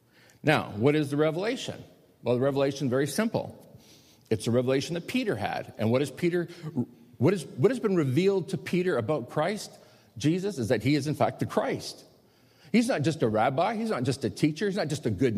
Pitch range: 120-180 Hz